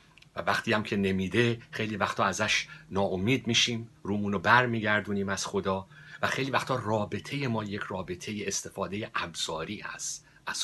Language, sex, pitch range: Persian, male, 100-125 Hz